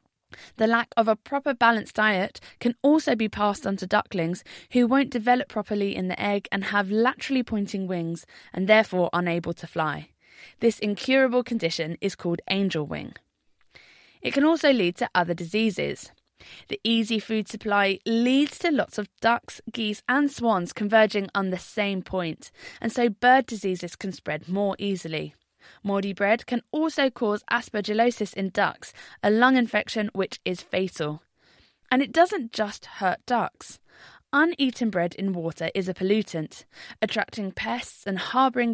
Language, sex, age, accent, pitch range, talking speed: English, female, 20-39, British, 185-235 Hz, 155 wpm